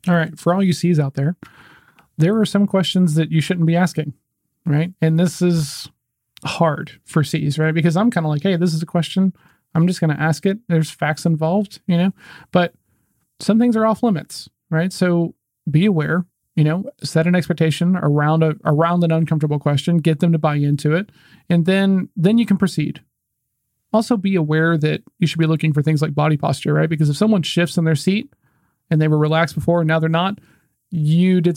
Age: 40-59